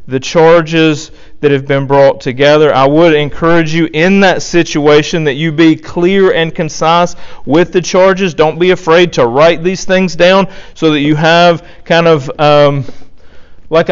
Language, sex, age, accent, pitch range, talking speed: English, male, 40-59, American, 140-175 Hz, 170 wpm